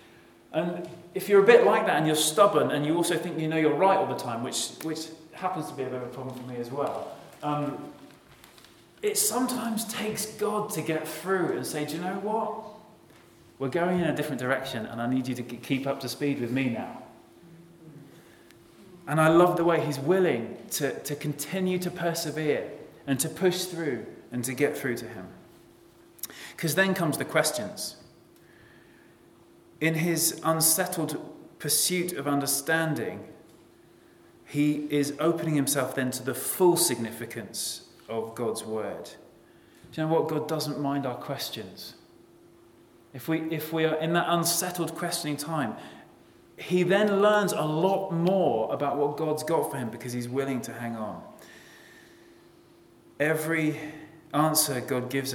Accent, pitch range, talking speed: British, 135-175 Hz, 165 wpm